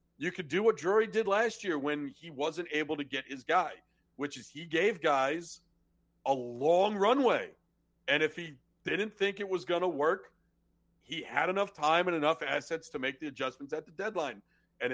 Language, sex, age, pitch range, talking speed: English, male, 40-59, 140-185 Hz, 195 wpm